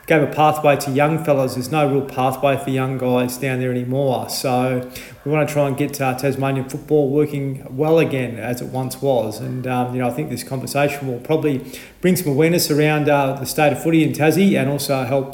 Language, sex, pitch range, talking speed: English, male, 130-150 Hz, 225 wpm